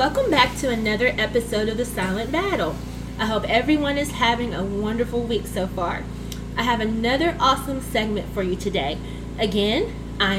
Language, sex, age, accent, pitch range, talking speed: English, female, 20-39, American, 200-265 Hz, 170 wpm